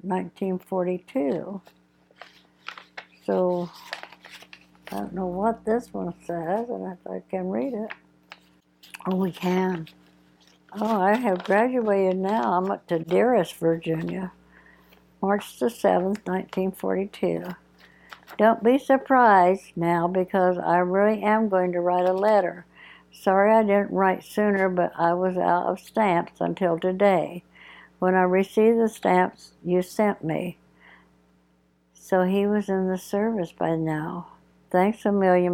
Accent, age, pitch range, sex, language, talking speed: American, 60-79, 170-195 Hz, female, English, 130 wpm